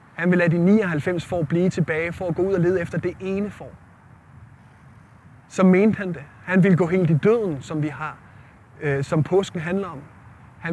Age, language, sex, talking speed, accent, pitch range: 30-49, Danish, male, 200 wpm, native, 130-185 Hz